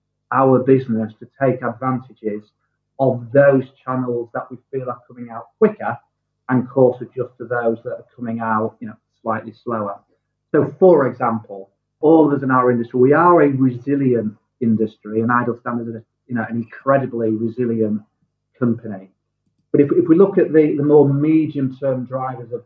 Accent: British